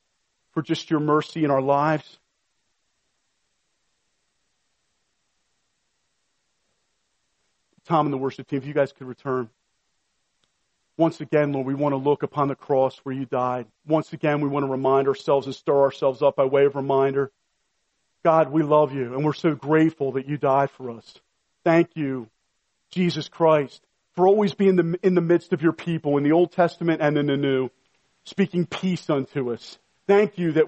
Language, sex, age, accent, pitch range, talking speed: English, male, 40-59, American, 140-200 Hz, 170 wpm